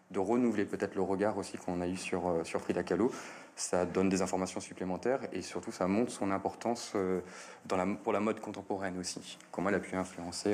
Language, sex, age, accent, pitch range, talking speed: French, male, 30-49, French, 90-100 Hz, 215 wpm